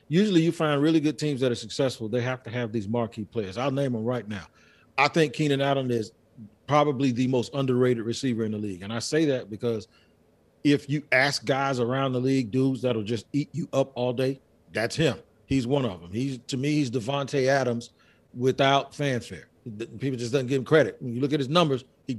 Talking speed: 215 wpm